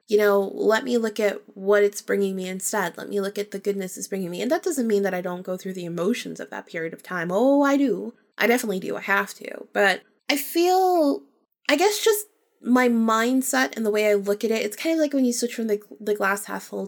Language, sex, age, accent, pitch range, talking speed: English, female, 20-39, American, 195-250 Hz, 260 wpm